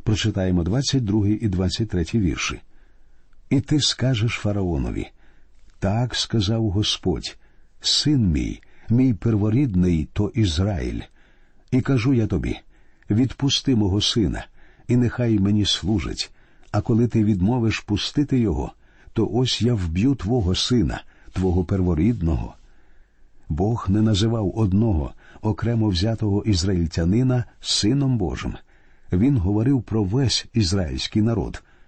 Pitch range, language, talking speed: 90-120 Hz, Ukrainian, 110 wpm